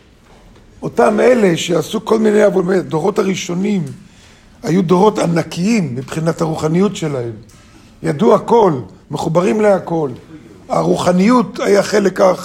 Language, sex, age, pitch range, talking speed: Hebrew, male, 50-69, 155-205 Hz, 95 wpm